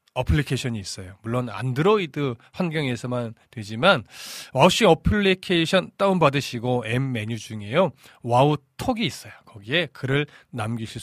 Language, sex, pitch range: Korean, male, 120-165 Hz